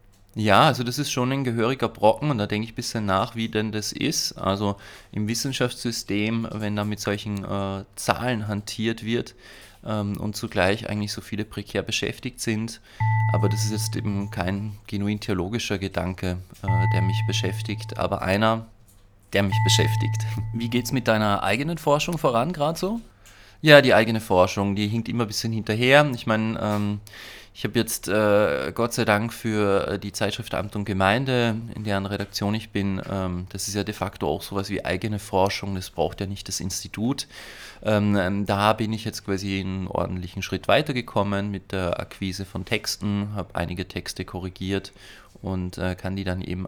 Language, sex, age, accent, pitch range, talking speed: German, male, 30-49, German, 100-115 Hz, 175 wpm